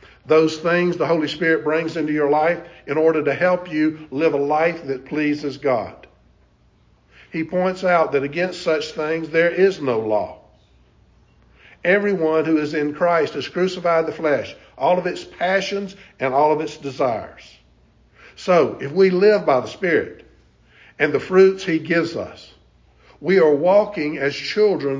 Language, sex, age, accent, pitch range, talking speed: English, male, 60-79, American, 140-170 Hz, 160 wpm